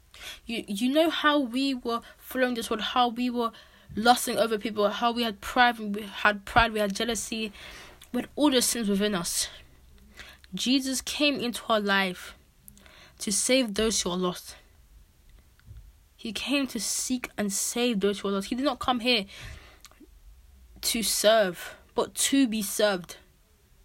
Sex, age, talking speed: female, 20-39, 160 wpm